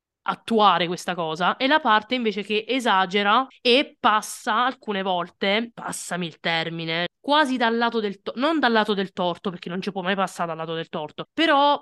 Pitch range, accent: 190-245 Hz, native